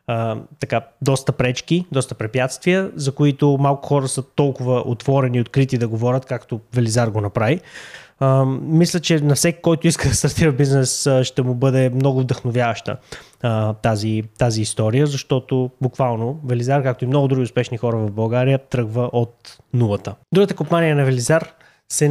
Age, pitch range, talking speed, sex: 20-39, 125-150 Hz, 160 wpm, male